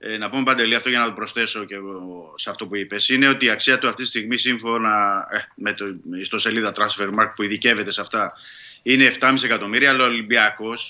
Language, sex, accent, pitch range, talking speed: Greek, male, native, 110-150 Hz, 220 wpm